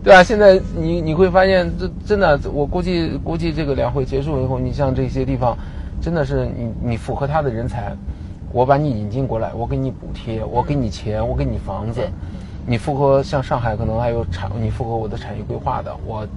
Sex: male